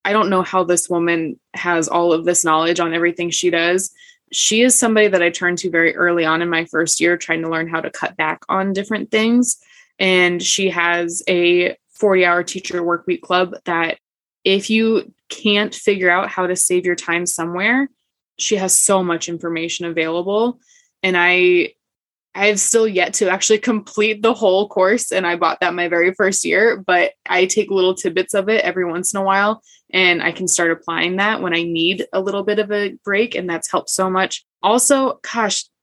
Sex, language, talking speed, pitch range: female, English, 205 wpm, 175-210 Hz